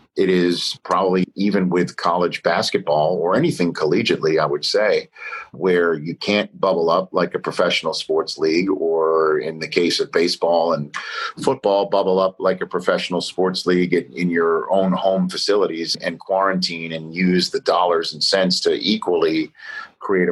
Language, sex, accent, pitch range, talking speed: English, male, American, 85-105 Hz, 160 wpm